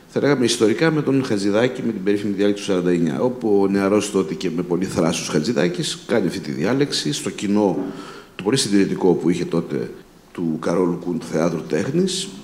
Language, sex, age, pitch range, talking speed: Greek, male, 50-69, 100-135 Hz, 190 wpm